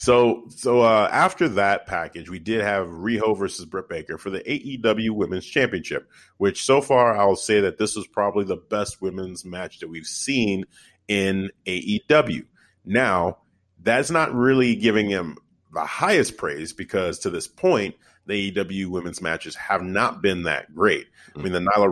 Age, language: 40-59, English